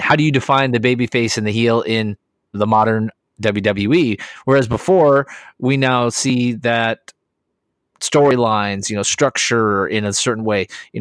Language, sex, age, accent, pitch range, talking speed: English, male, 30-49, American, 110-130 Hz, 160 wpm